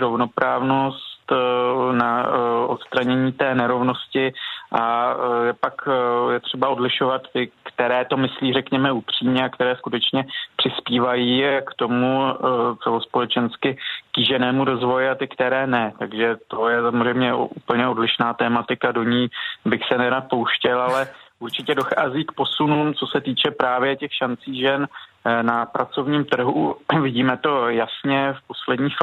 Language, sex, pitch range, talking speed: Czech, male, 120-135 Hz, 130 wpm